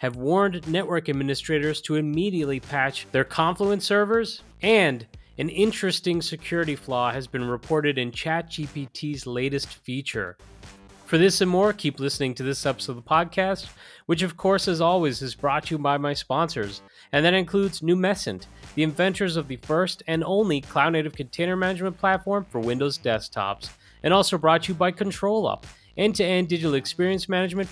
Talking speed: 160 wpm